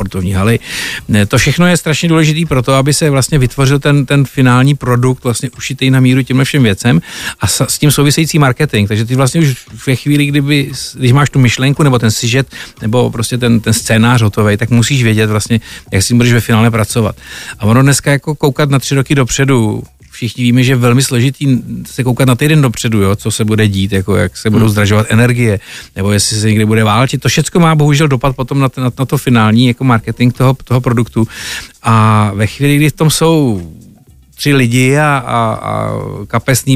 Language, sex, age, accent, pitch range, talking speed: Czech, male, 50-69, native, 115-135 Hz, 200 wpm